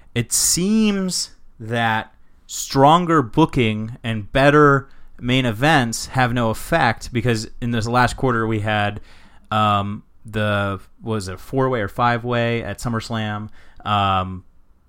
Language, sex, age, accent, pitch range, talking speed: English, male, 30-49, American, 105-135 Hz, 125 wpm